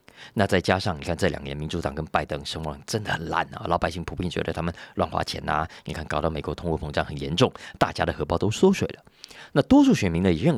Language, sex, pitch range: Chinese, male, 80-110 Hz